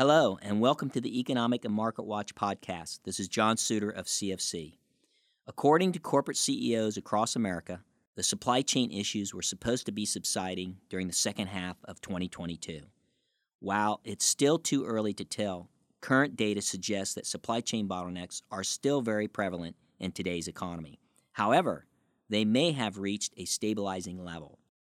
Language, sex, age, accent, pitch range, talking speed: English, male, 50-69, American, 95-115 Hz, 160 wpm